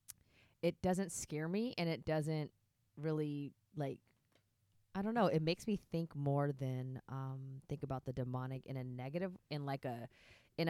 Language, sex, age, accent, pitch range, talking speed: English, female, 20-39, American, 130-150 Hz, 170 wpm